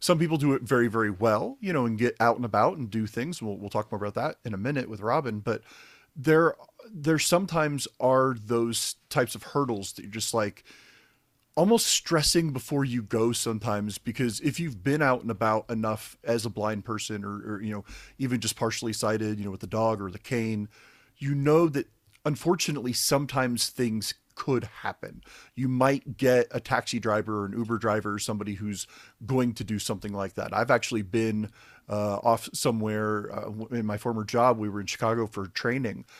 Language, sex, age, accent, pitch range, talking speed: English, male, 40-59, American, 110-130 Hz, 195 wpm